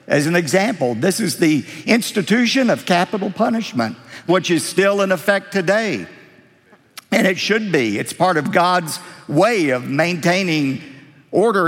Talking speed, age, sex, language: 145 wpm, 50-69, male, English